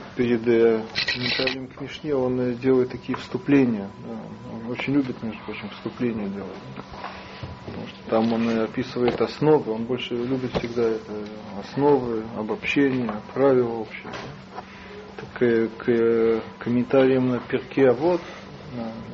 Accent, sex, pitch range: native, male, 115-135 Hz